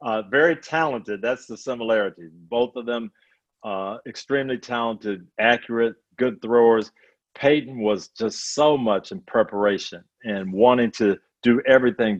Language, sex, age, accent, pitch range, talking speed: English, male, 50-69, American, 105-125 Hz, 135 wpm